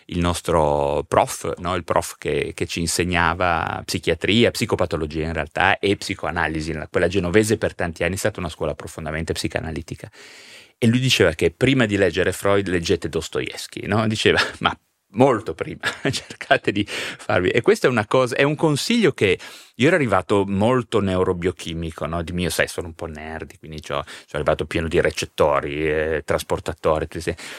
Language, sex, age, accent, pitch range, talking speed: Italian, male, 30-49, native, 85-110 Hz, 155 wpm